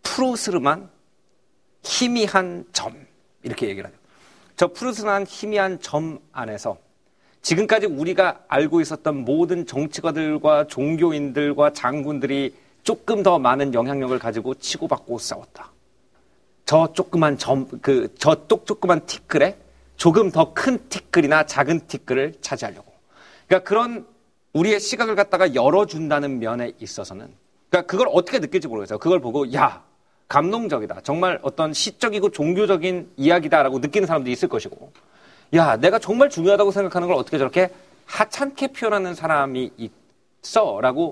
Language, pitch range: Korean, 145-200 Hz